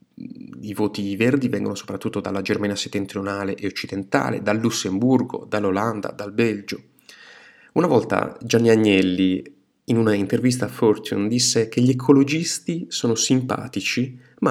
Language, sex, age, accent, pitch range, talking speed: Italian, male, 30-49, native, 105-140 Hz, 130 wpm